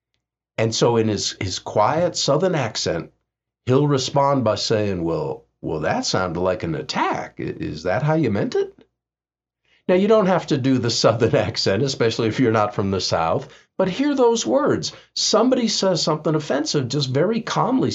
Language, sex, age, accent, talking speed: English, male, 50-69, American, 175 wpm